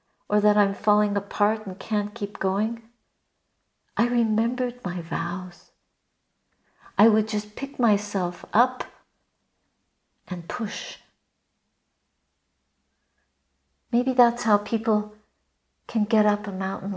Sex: female